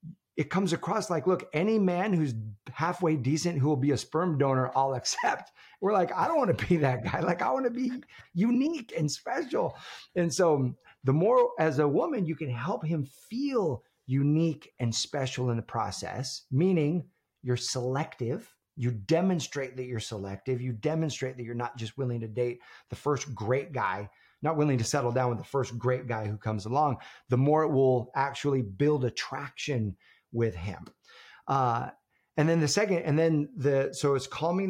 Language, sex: English, male